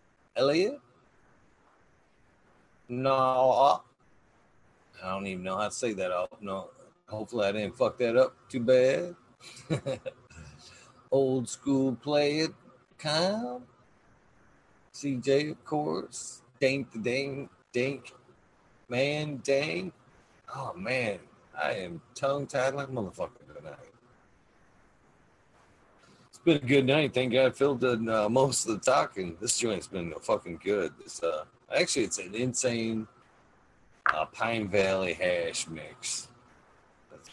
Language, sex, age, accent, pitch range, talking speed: English, male, 40-59, American, 110-140 Hz, 120 wpm